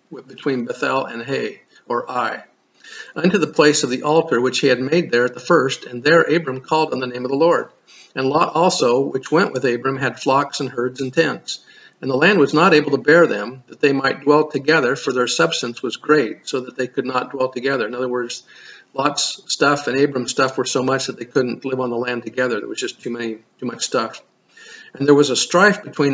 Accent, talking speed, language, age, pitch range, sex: American, 235 wpm, English, 50-69, 125-155 Hz, male